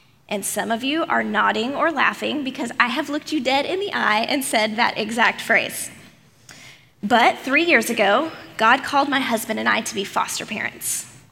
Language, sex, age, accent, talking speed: English, female, 20-39, American, 190 wpm